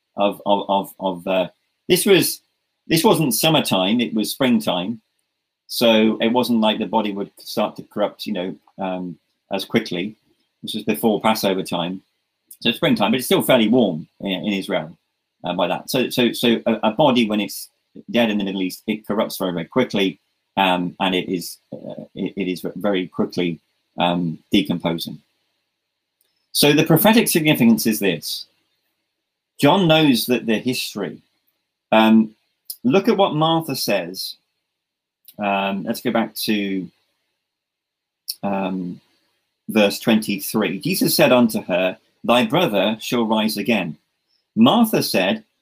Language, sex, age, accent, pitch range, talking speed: English, male, 40-59, British, 100-145 Hz, 145 wpm